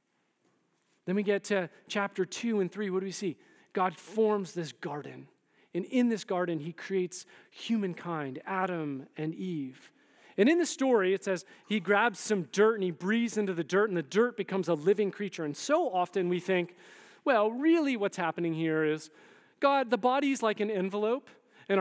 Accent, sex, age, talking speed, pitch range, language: American, male, 40-59, 185 wpm, 175-240 Hz, English